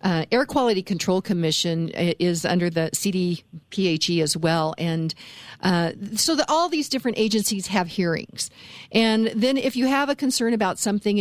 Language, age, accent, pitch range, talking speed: English, 50-69, American, 170-220 Hz, 155 wpm